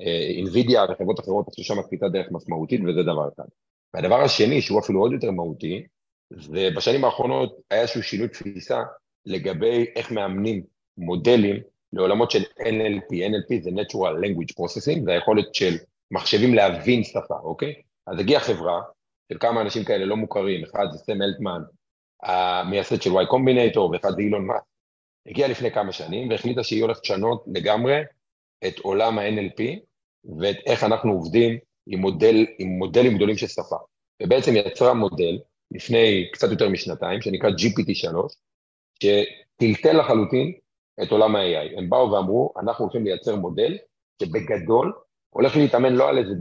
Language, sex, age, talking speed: Hebrew, male, 40-59, 140 wpm